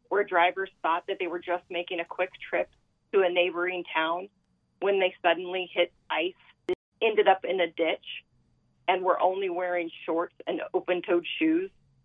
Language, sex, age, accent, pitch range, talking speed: English, female, 30-49, American, 175-230 Hz, 165 wpm